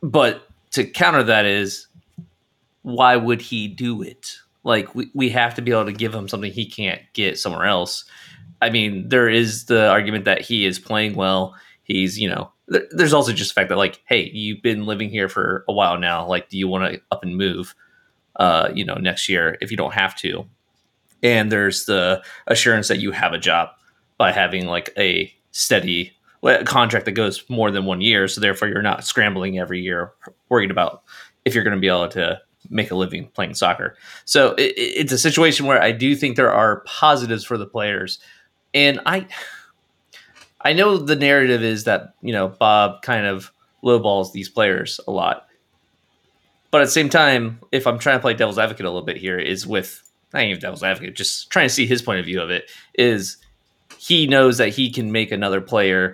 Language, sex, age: English, male, 30-49